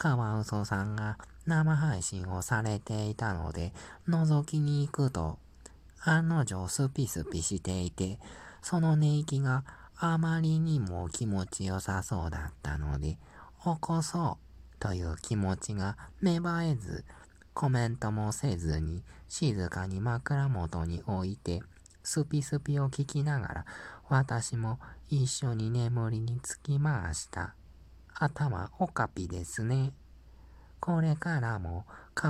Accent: native